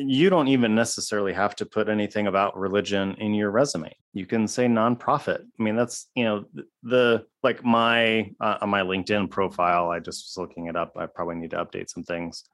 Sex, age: male, 20-39